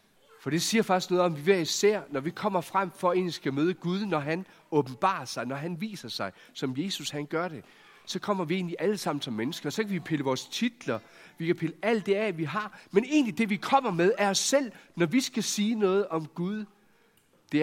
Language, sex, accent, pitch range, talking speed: Danish, male, native, 145-190 Hz, 245 wpm